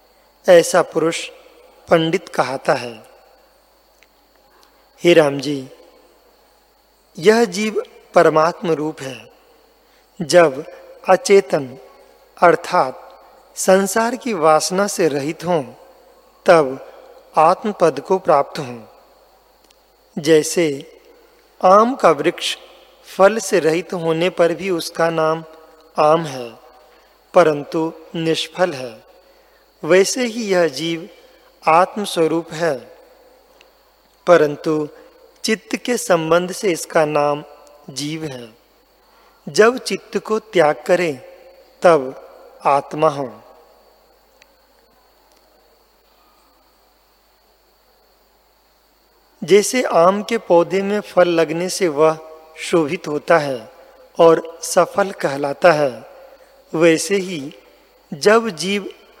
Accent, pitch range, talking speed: native, 160-205 Hz, 90 wpm